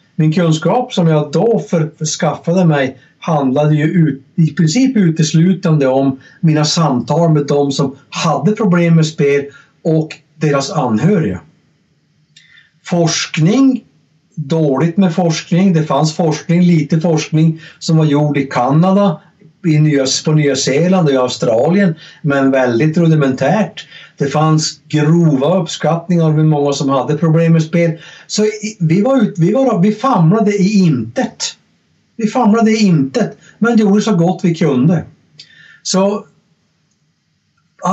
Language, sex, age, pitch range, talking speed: Swedish, male, 60-79, 155-185 Hz, 130 wpm